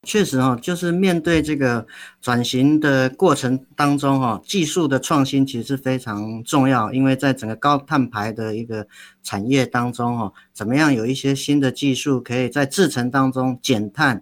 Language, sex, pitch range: Chinese, male, 120-155 Hz